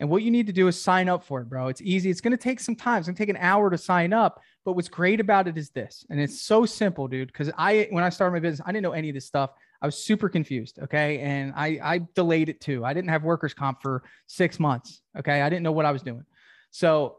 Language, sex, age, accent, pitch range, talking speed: English, male, 20-39, American, 155-195 Hz, 290 wpm